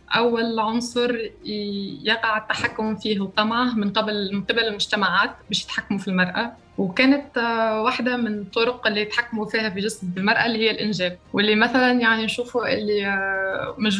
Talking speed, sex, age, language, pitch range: 135 wpm, female, 20-39, Arabic, 200-230 Hz